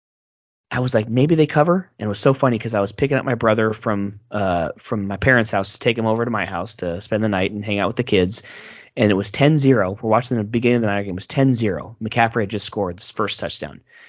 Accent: American